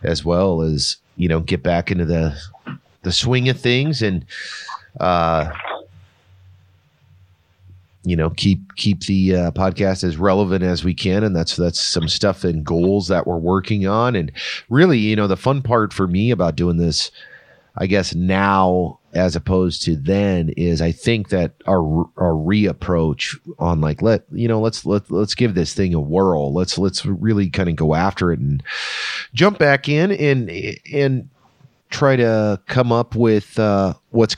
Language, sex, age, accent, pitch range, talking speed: English, male, 30-49, American, 85-110 Hz, 170 wpm